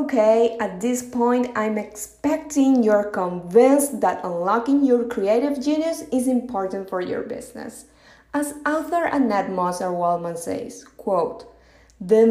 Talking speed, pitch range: 125 wpm, 190-255 Hz